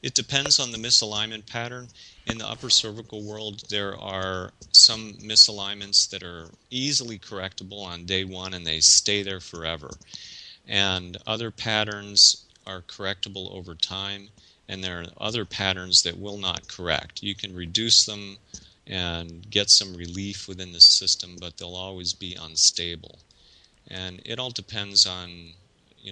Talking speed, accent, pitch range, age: 150 wpm, American, 85-100 Hz, 30-49